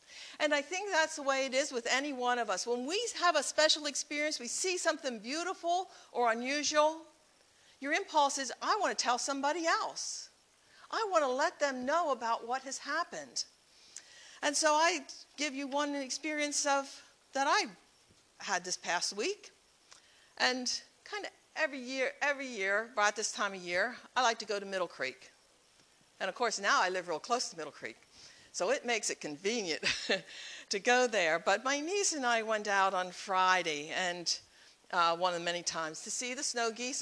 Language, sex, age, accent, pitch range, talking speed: English, female, 60-79, American, 190-290 Hz, 190 wpm